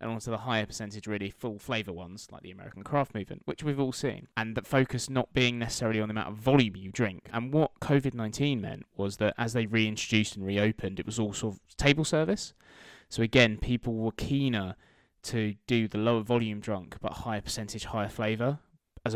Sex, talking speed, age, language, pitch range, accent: male, 205 wpm, 20-39, English, 110-125 Hz, British